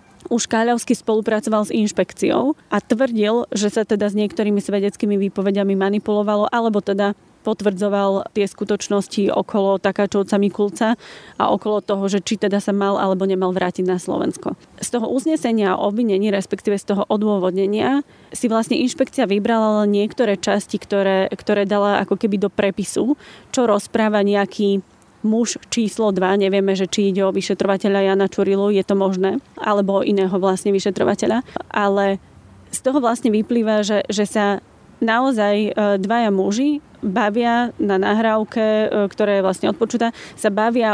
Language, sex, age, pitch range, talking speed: Slovak, female, 20-39, 200-225 Hz, 145 wpm